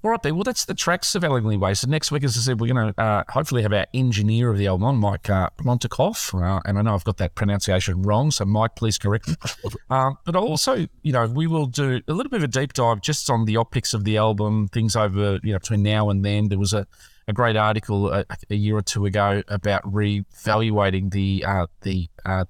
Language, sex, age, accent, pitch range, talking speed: English, male, 30-49, Australian, 100-125 Hz, 245 wpm